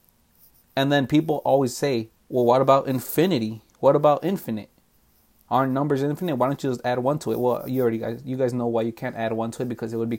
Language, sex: English, male